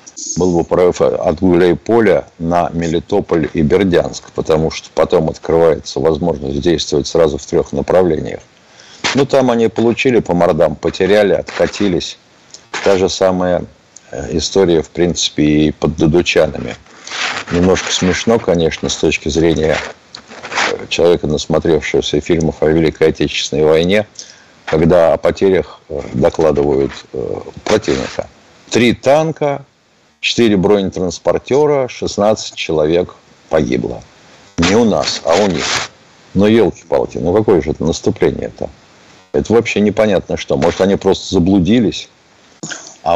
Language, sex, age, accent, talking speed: Russian, male, 50-69, native, 120 wpm